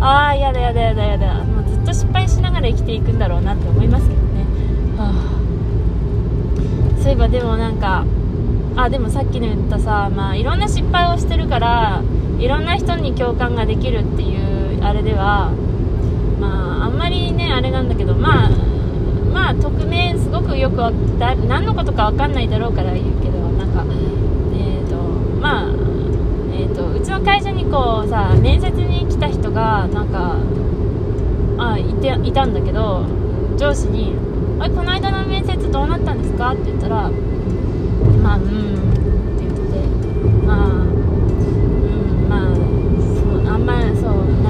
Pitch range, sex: 95-105 Hz, female